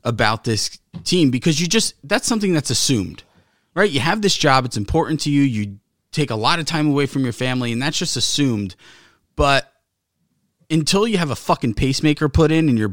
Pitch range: 110-150 Hz